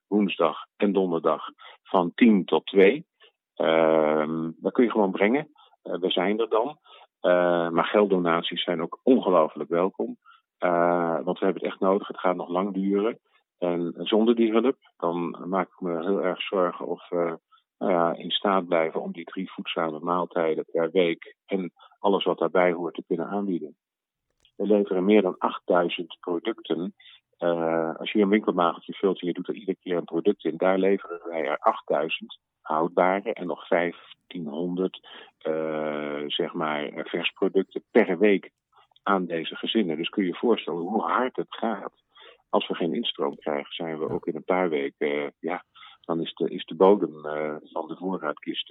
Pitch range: 85-95 Hz